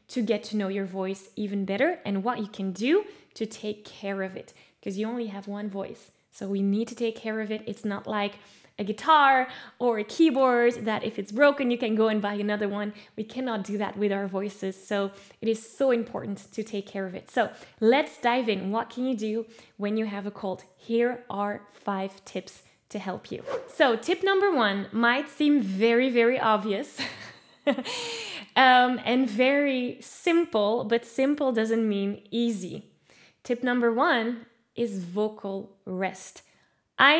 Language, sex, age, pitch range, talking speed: English, female, 10-29, 200-250 Hz, 180 wpm